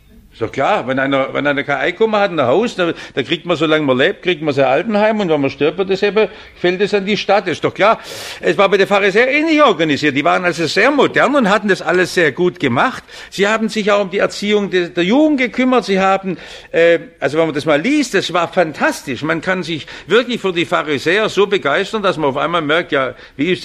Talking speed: 250 wpm